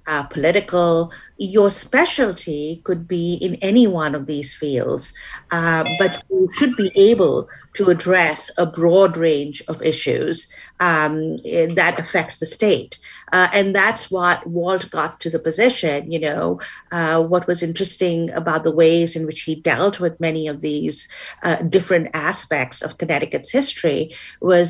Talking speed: 155 wpm